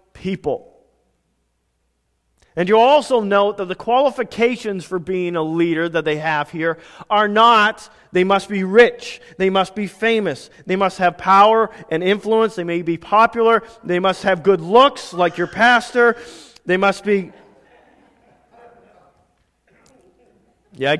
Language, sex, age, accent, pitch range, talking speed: English, male, 40-59, American, 160-215 Hz, 135 wpm